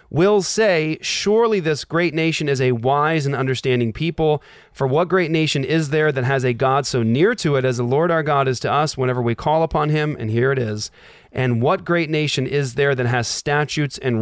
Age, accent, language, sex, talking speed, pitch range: 30-49, American, English, male, 225 wpm, 115-145 Hz